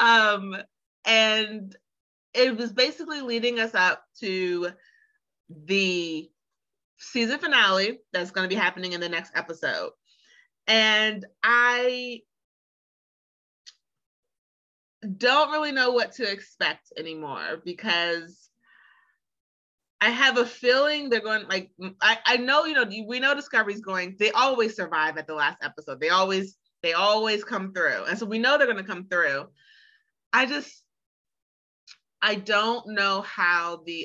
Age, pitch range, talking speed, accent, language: 30-49, 170-225 Hz, 135 wpm, American, English